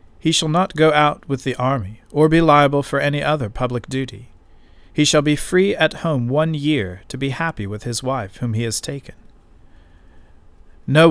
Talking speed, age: 190 wpm, 50-69